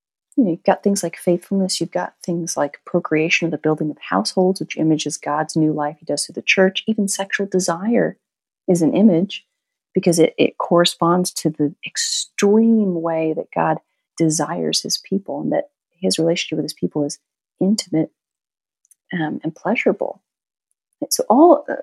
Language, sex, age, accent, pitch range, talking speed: English, female, 40-59, American, 165-230 Hz, 165 wpm